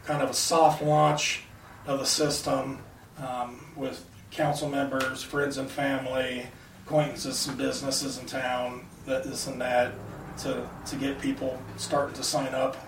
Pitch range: 125-140 Hz